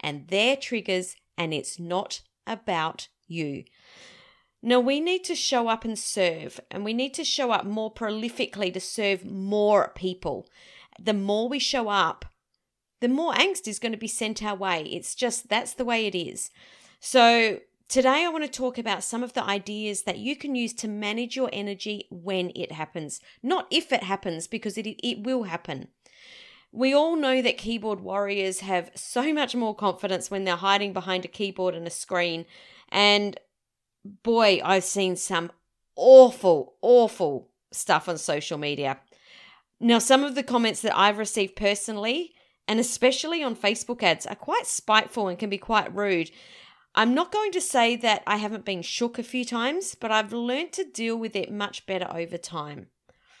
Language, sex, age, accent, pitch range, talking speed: English, female, 30-49, Australian, 190-245 Hz, 180 wpm